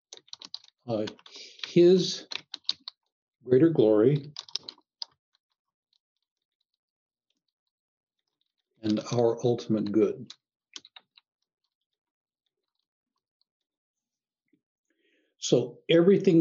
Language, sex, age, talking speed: English, male, 60-79, 35 wpm